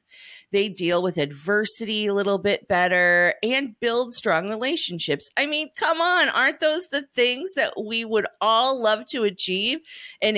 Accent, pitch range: American, 150-225 Hz